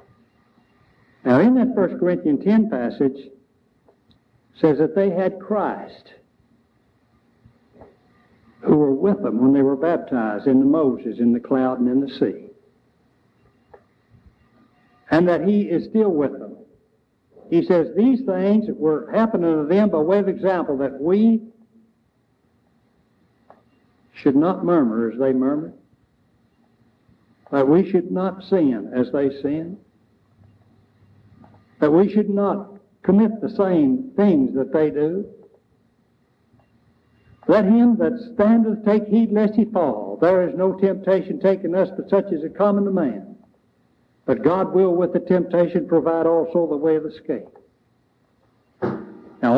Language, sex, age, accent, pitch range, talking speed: English, male, 60-79, American, 140-205 Hz, 135 wpm